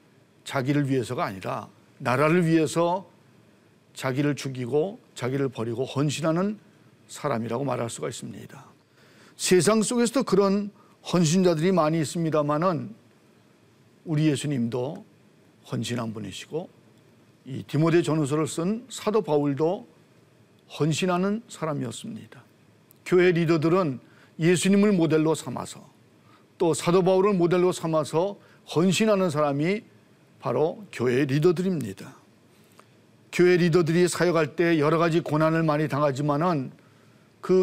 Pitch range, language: 145-180 Hz, Korean